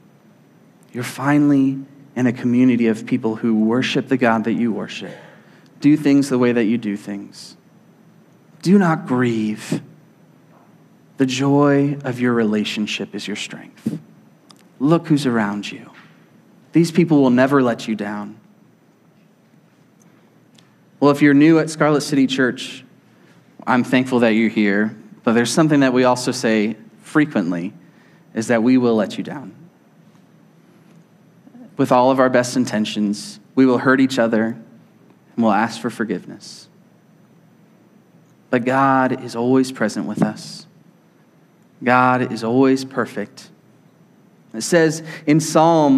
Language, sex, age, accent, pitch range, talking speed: English, male, 30-49, American, 120-155 Hz, 135 wpm